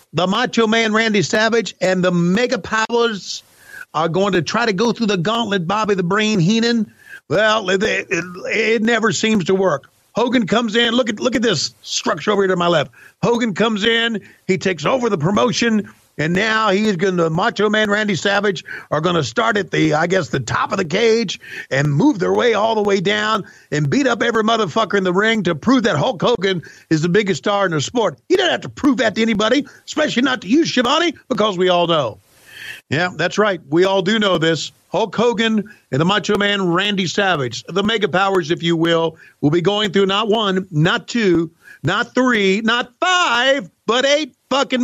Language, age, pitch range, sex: English, 50-69, 185-245 Hz, male